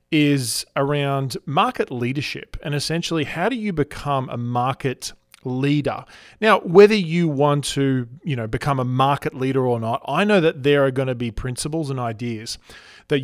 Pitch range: 130-155 Hz